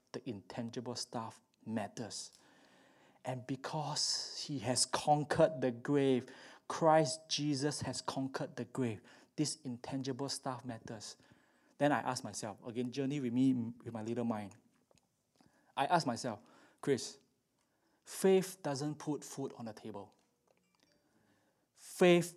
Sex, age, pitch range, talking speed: male, 20-39, 120-150 Hz, 120 wpm